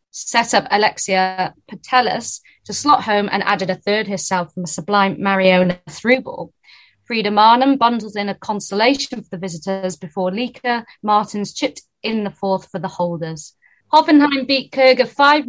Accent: British